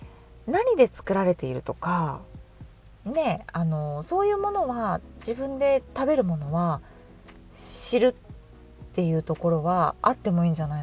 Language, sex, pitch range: Japanese, female, 160-260 Hz